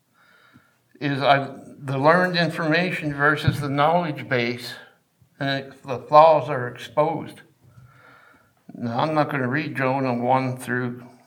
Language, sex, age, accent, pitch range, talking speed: English, male, 60-79, American, 125-150 Hz, 130 wpm